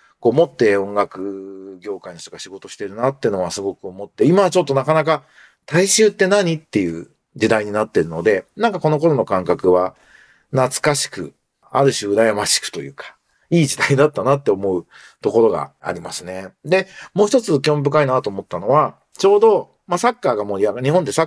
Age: 40-59